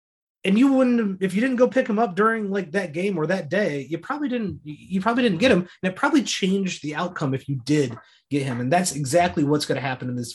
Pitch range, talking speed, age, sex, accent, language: 125-190 Hz, 260 wpm, 30-49, male, American, English